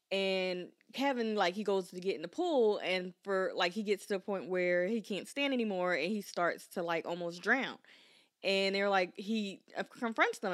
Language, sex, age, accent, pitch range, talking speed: English, female, 20-39, American, 175-230 Hz, 205 wpm